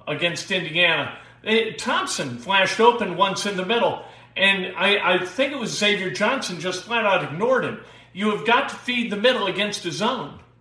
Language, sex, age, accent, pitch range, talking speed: English, male, 50-69, American, 165-210 Hz, 180 wpm